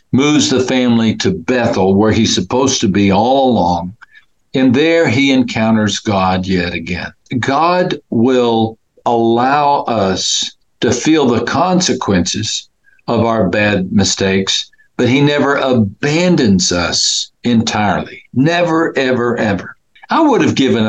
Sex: male